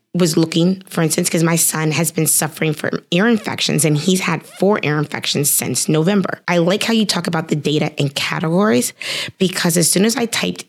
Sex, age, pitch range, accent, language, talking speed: female, 20-39, 165-210 Hz, American, English, 210 wpm